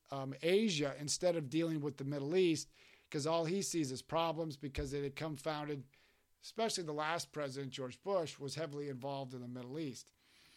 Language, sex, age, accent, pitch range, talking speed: English, male, 50-69, American, 135-170 Hz, 185 wpm